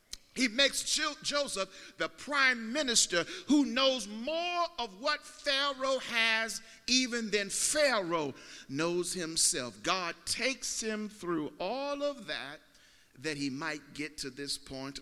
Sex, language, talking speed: male, English, 130 wpm